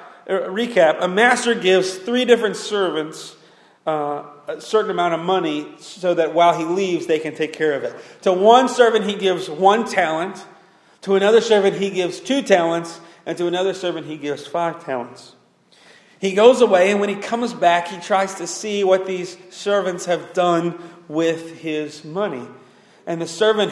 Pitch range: 155-195 Hz